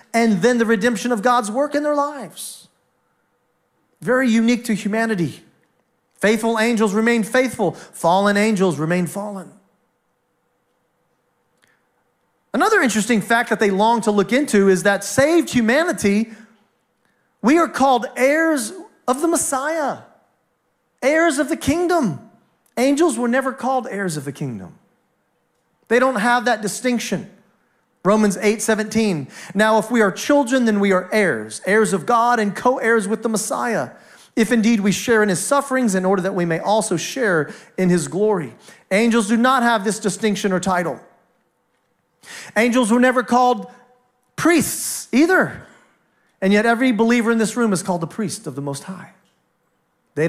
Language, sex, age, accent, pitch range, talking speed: English, male, 40-59, American, 200-250 Hz, 150 wpm